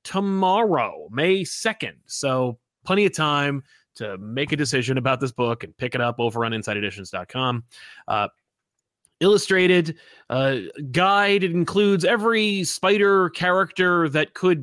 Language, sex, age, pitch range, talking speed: English, male, 30-49, 125-175 Hz, 130 wpm